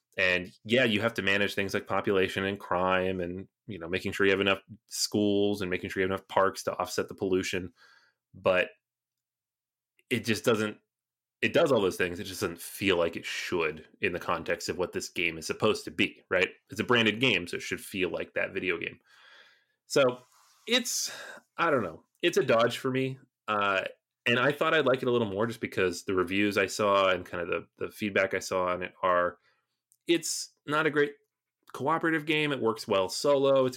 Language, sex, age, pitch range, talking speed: English, male, 30-49, 95-125 Hz, 210 wpm